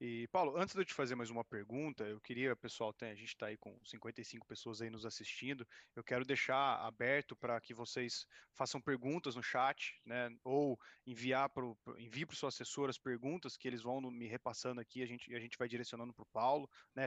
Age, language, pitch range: 20-39, Portuguese, 125-150 Hz